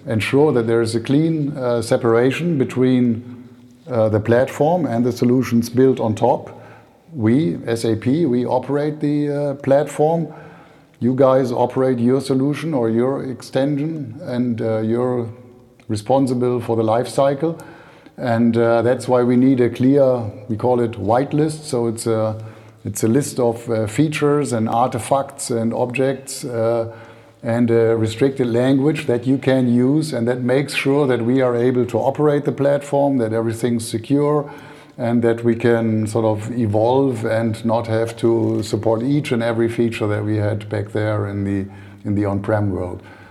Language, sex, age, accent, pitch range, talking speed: English, male, 50-69, German, 115-140 Hz, 160 wpm